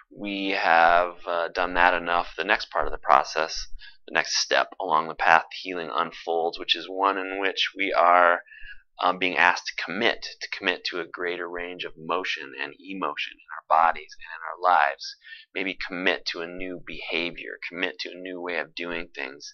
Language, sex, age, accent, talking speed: English, male, 30-49, American, 195 wpm